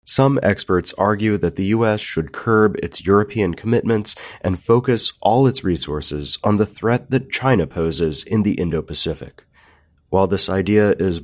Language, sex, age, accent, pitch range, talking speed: English, male, 30-49, American, 85-110 Hz, 155 wpm